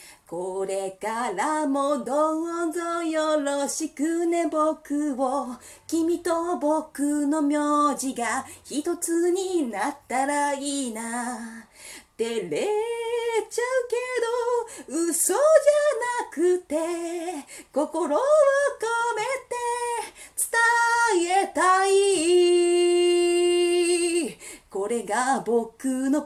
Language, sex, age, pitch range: Japanese, female, 40-59, 235-335 Hz